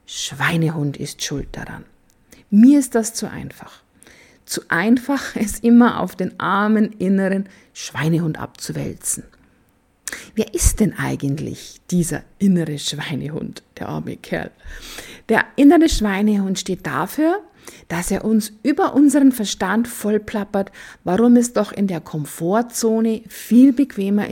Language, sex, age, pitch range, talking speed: German, female, 50-69, 185-235 Hz, 120 wpm